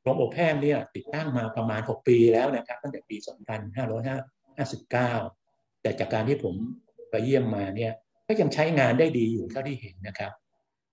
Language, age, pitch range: Thai, 60-79, 110-140 Hz